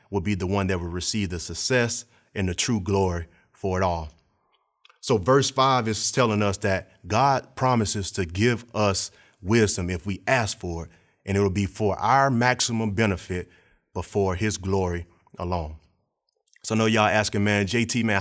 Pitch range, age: 95-120 Hz, 30-49